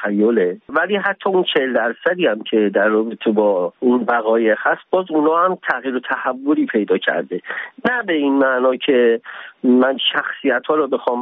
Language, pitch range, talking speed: Persian, 120-155 Hz, 175 wpm